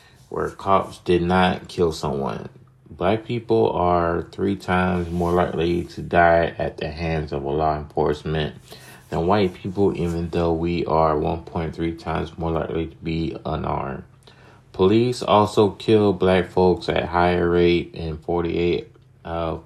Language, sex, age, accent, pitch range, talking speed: English, male, 30-49, American, 85-95 Hz, 145 wpm